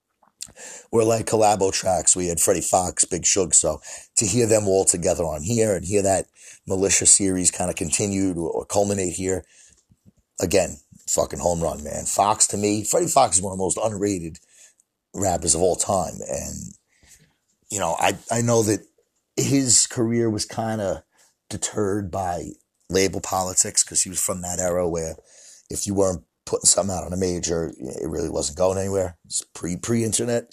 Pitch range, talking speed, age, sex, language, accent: 90-110 Hz, 175 wpm, 30-49, male, English, American